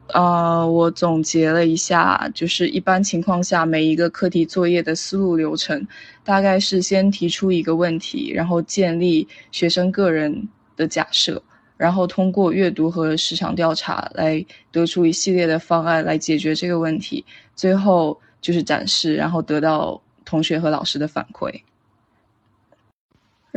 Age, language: 20-39, Chinese